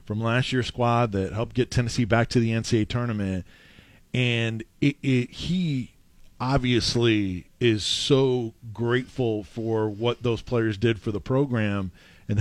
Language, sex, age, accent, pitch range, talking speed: English, male, 40-59, American, 110-135 Hz, 135 wpm